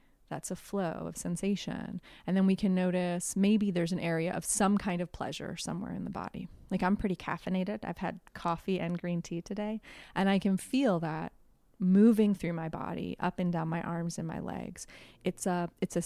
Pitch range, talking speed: 175-205 Hz, 205 wpm